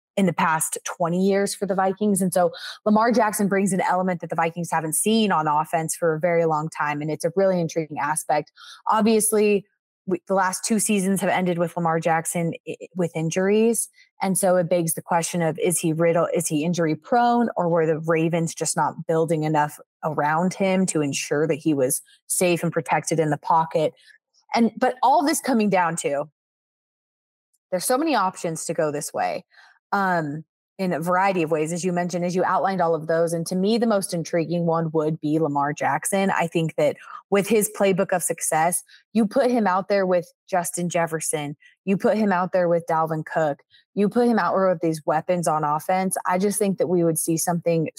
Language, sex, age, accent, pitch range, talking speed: English, female, 20-39, American, 160-195 Hz, 205 wpm